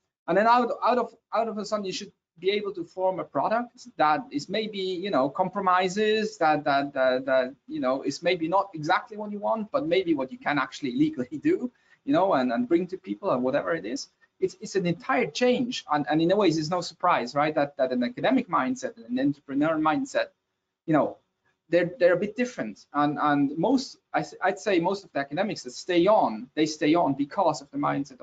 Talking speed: 220 wpm